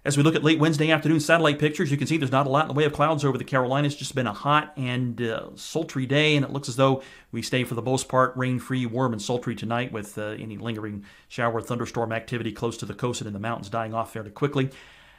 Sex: male